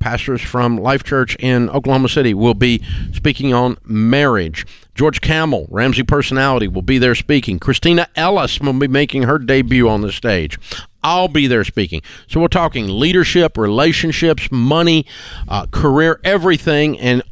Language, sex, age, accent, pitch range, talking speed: English, male, 50-69, American, 115-155 Hz, 150 wpm